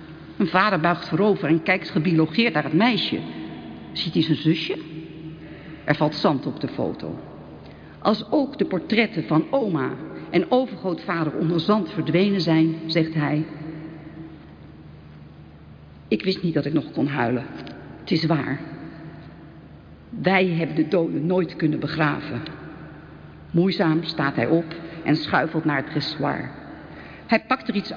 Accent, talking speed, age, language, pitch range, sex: Dutch, 140 wpm, 50-69, English, 155-195 Hz, female